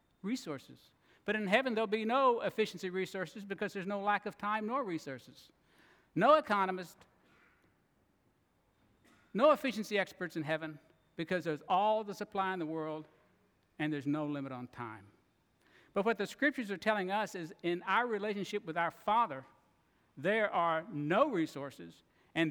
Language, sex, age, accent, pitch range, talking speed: English, male, 60-79, American, 160-210 Hz, 150 wpm